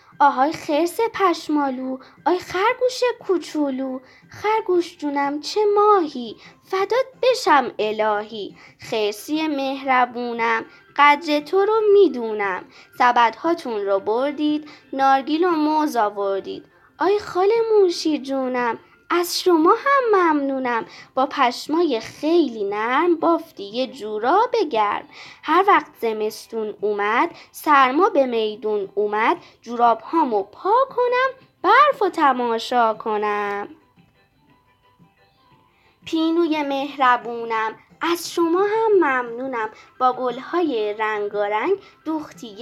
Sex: female